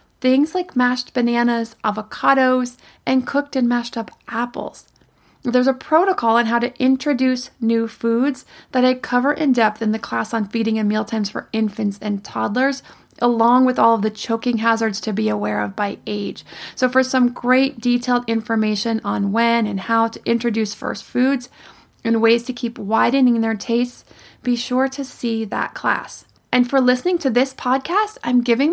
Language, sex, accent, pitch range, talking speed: English, female, American, 230-260 Hz, 175 wpm